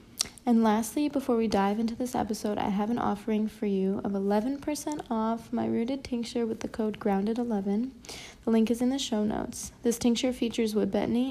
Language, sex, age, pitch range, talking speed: English, female, 20-39, 210-240 Hz, 190 wpm